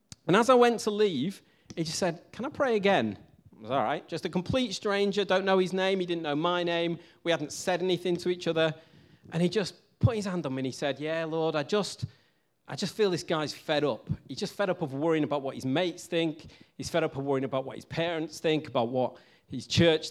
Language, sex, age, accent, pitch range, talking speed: English, male, 40-59, British, 140-185 Hz, 250 wpm